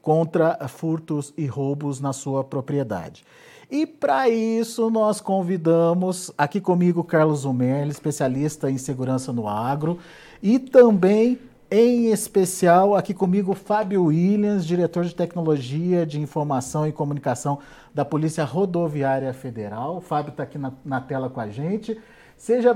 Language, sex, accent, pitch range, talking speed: Portuguese, male, Brazilian, 150-200 Hz, 135 wpm